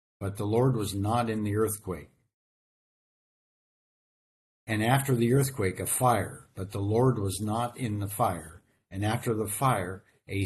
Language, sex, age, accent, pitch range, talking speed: English, male, 60-79, American, 95-125 Hz, 155 wpm